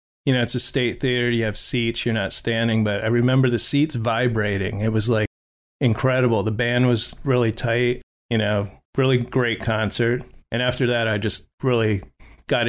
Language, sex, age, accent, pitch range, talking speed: English, male, 30-49, American, 110-130 Hz, 185 wpm